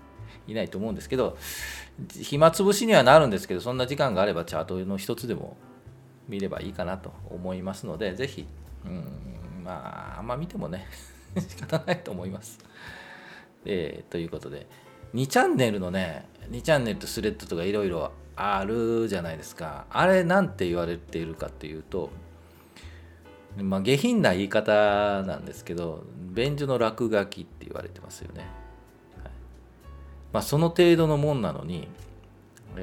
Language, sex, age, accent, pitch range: Japanese, male, 40-59, native, 85-115 Hz